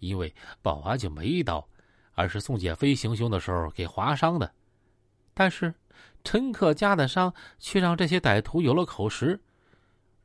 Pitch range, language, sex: 95-140 Hz, Chinese, male